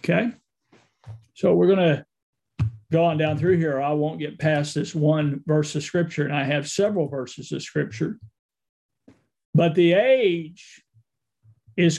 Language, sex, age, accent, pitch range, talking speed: English, male, 50-69, American, 155-195 Hz, 150 wpm